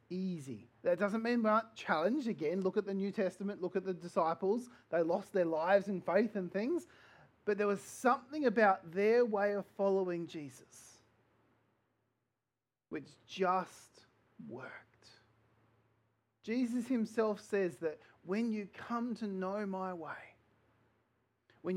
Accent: Australian